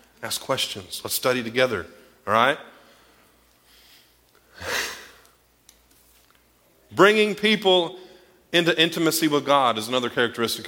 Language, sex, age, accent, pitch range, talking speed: English, male, 40-59, American, 140-190 Hz, 90 wpm